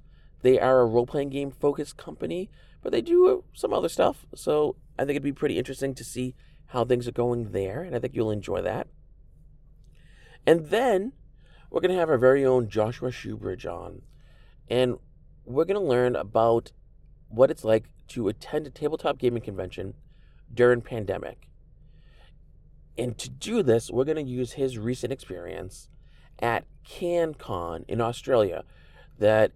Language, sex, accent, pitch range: English, male, American, 115-150 Hz